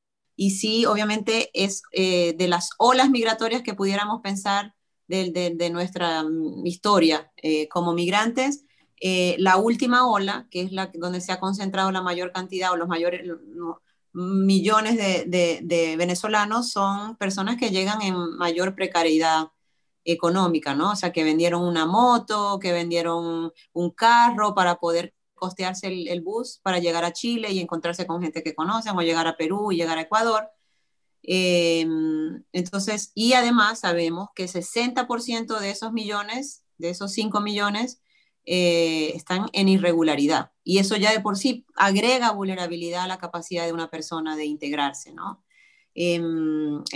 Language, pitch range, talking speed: Spanish, 170-215 Hz, 155 wpm